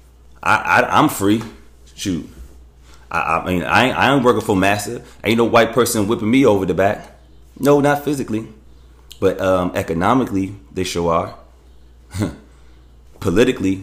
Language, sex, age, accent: English, male, 30-49, American